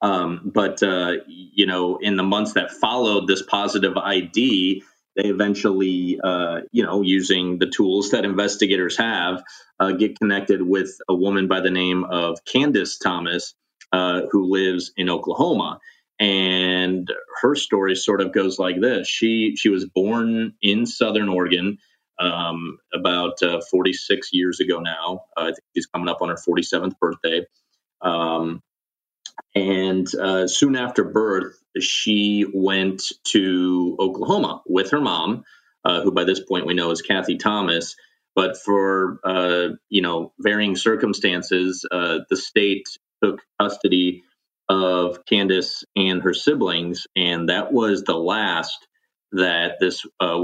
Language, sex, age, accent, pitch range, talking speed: English, male, 30-49, American, 90-100 Hz, 145 wpm